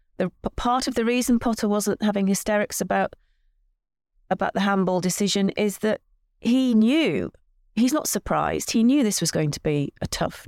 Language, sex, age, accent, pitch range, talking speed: English, female, 30-49, British, 165-205 Hz, 170 wpm